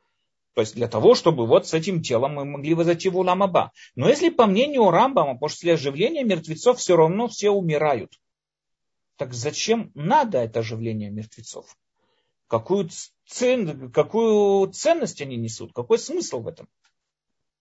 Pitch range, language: 150-220 Hz, Russian